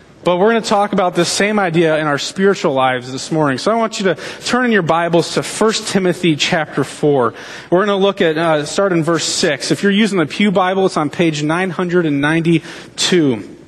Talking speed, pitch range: 215 wpm, 155-195 Hz